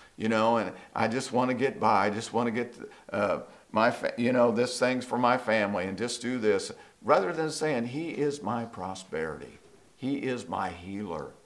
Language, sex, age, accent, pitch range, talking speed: English, male, 50-69, American, 100-130 Hz, 200 wpm